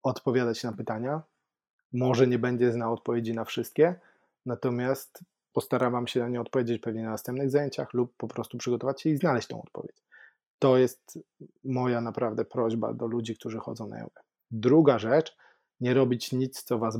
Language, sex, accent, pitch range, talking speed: Polish, male, native, 115-135 Hz, 165 wpm